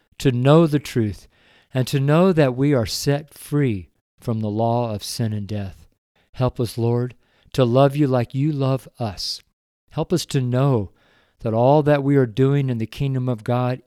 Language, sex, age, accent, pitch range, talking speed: English, male, 50-69, American, 100-130 Hz, 190 wpm